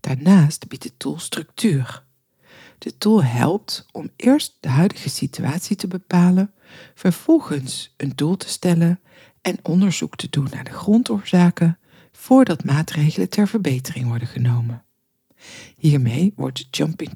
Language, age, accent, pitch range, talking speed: Dutch, 60-79, Dutch, 140-190 Hz, 130 wpm